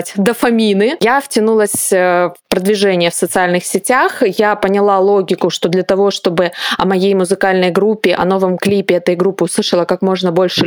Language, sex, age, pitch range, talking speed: Russian, female, 20-39, 185-215 Hz, 155 wpm